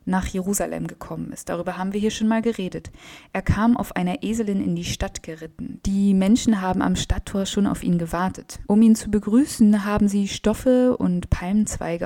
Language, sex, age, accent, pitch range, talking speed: German, female, 20-39, German, 175-215 Hz, 190 wpm